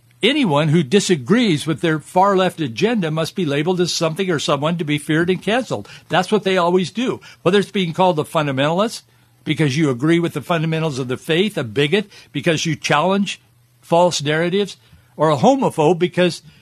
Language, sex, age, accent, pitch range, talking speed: English, male, 60-79, American, 125-190 Hz, 180 wpm